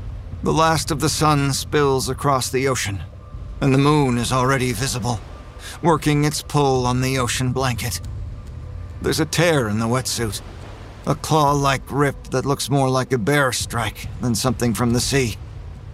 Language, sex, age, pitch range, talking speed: English, male, 40-59, 105-140 Hz, 160 wpm